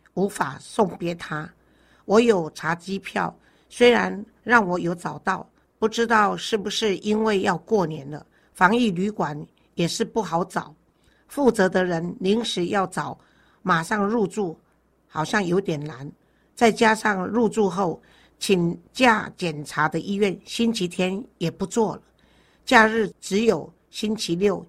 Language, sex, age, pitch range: Chinese, female, 50-69, 170-210 Hz